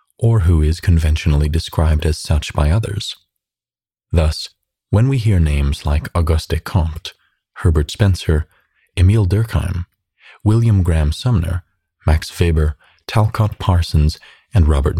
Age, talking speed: 30-49, 120 wpm